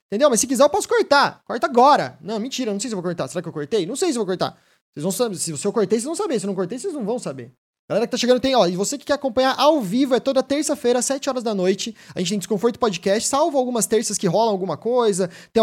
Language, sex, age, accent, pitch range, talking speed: Portuguese, male, 20-39, Brazilian, 180-240 Hz, 305 wpm